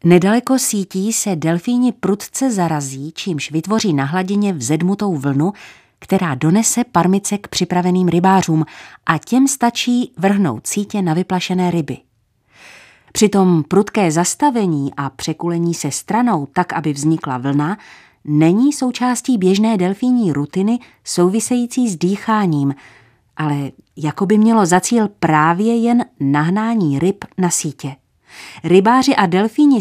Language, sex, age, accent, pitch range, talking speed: Czech, female, 30-49, native, 155-220 Hz, 120 wpm